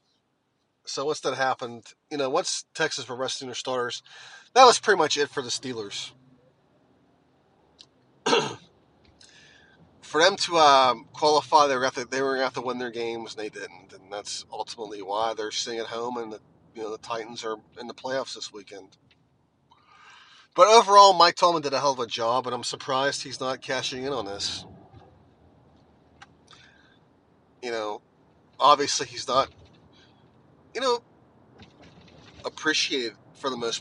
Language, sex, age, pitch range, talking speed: English, male, 30-49, 120-145 Hz, 150 wpm